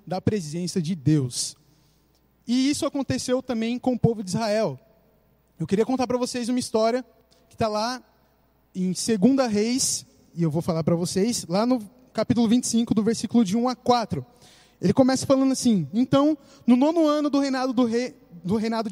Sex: male